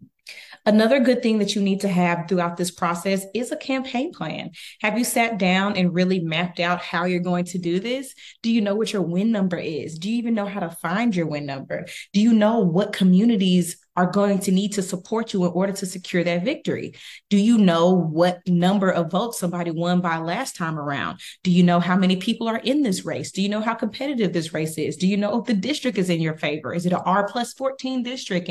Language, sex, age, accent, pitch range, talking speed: English, female, 30-49, American, 175-210 Hz, 240 wpm